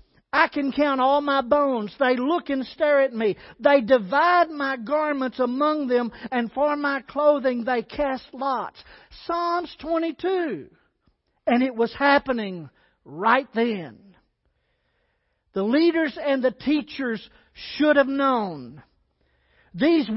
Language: English